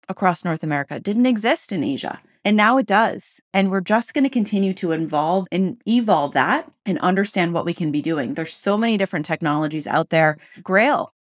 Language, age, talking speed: English, 30-49, 200 wpm